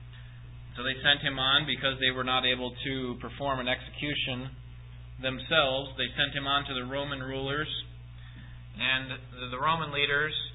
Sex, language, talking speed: male, English, 155 wpm